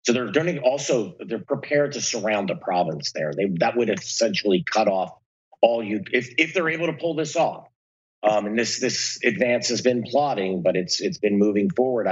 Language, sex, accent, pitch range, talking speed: English, male, American, 100-125 Hz, 205 wpm